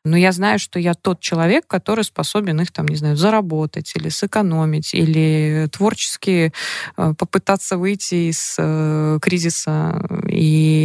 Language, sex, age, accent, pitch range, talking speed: Russian, female, 20-39, native, 155-190 Hz, 135 wpm